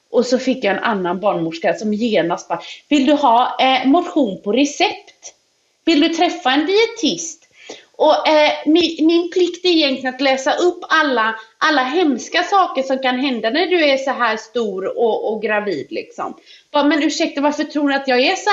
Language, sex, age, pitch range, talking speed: English, female, 30-49, 220-315 Hz, 195 wpm